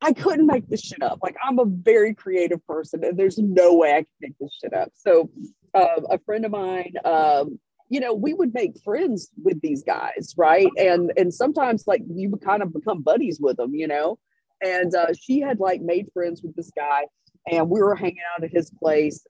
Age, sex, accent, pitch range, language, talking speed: 40-59, female, American, 160-215 Hz, English, 220 wpm